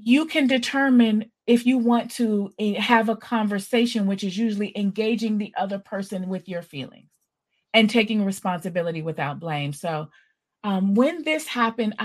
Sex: female